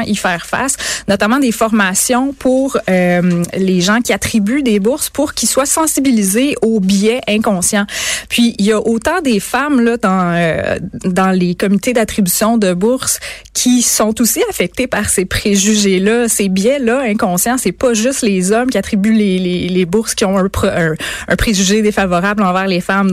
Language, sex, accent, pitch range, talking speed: French, female, Canadian, 195-235 Hz, 175 wpm